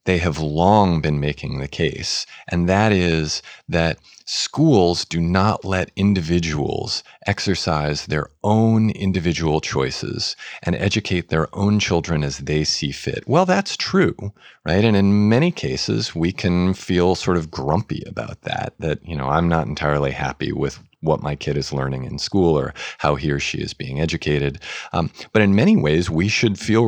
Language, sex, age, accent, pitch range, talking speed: English, male, 40-59, American, 75-100 Hz, 170 wpm